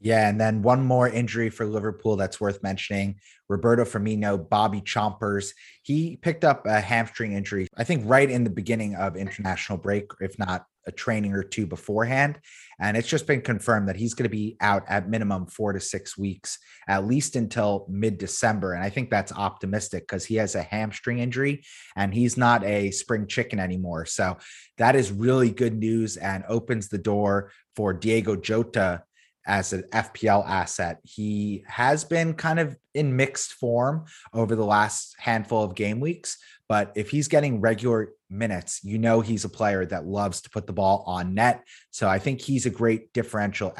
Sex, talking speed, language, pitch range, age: male, 185 wpm, English, 100-120 Hz, 30-49